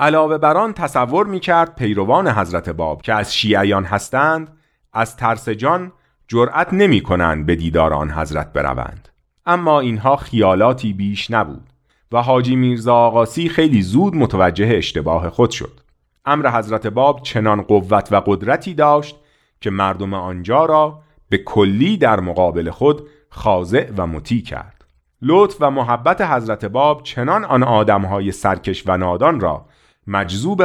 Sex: male